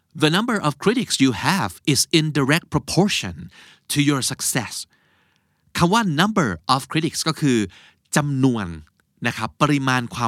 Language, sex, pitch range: Thai, male, 110-165 Hz